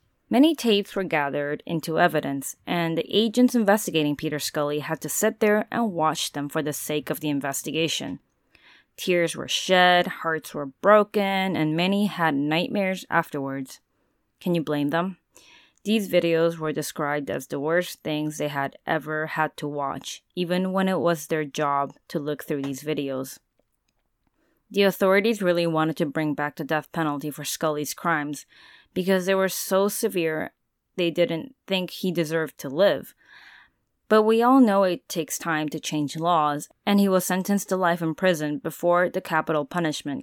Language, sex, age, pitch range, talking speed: English, female, 20-39, 150-185 Hz, 165 wpm